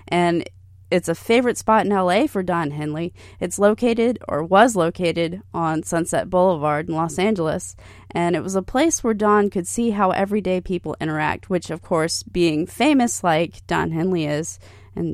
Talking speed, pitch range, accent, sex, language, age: 175 wpm, 150-190 Hz, American, female, English, 30-49